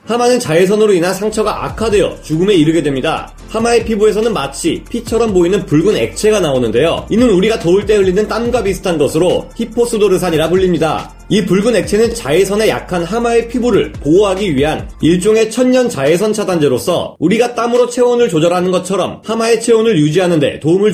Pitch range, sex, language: 170-225 Hz, male, Korean